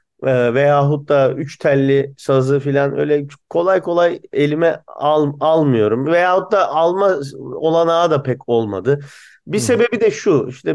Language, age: Turkish, 30-49